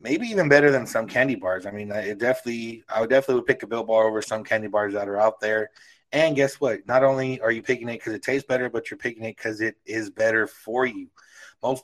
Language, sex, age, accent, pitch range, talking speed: English, male, 20-39, American, 110-130 Hz, 250 wpm